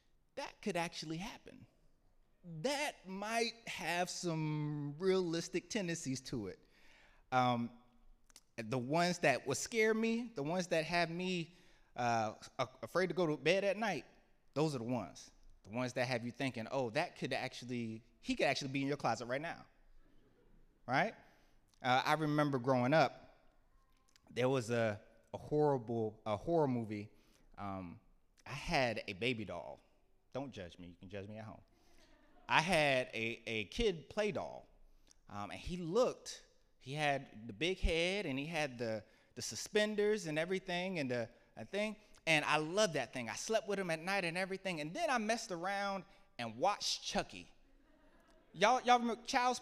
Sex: male